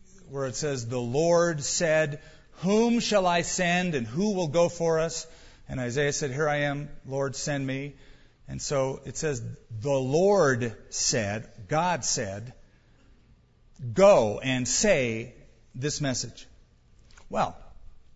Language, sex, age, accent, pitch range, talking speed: English, male, 50-69, American, 130-175 Hz, 130 wpm